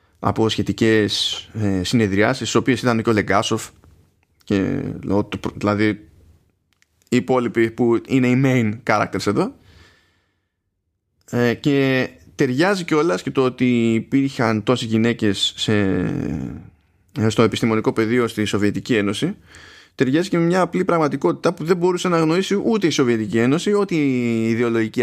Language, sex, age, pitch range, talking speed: Greek, male, 20-39, 95-130 Hz, 120 wpm